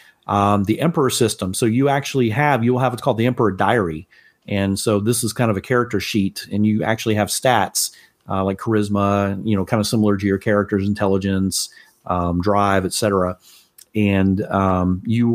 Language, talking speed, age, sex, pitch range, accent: English, 190 wpm, 40-59, male, 100-115 Hz, American